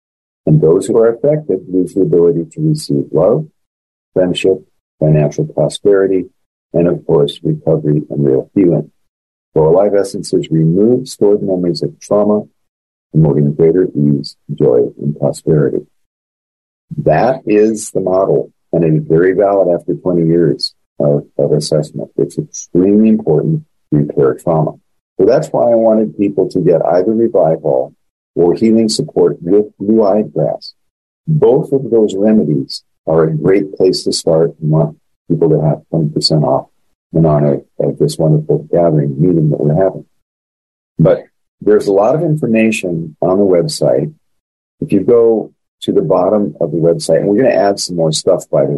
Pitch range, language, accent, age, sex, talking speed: 75-105 Hz, English, American, 50-69, male, 155 wpm